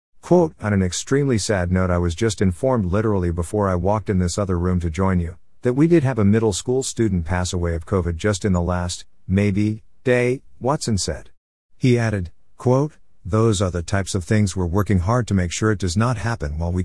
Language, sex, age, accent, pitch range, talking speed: English, male, 50-69, American, 90-110 Hz, 220 wpm